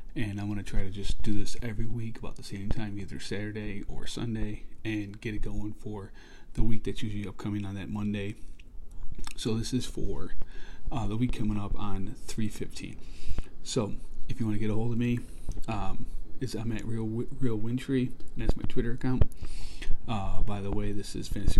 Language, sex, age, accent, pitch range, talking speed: English, male, 40-59, American, 95-115 Hz, 200 wpm